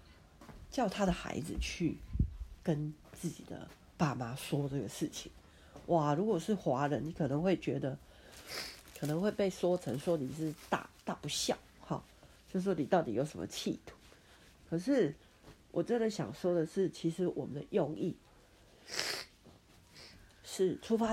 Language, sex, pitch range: Chinese, female, 135-195 Hz